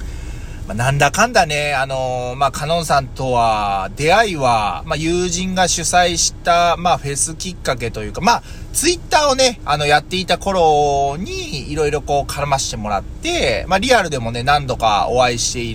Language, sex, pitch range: Japanese, male, 115-180 Hz